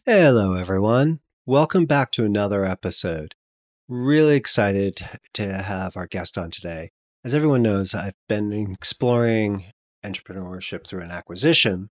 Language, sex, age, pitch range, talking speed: English, male, 40-59, 95-130 Hz, 125 wpm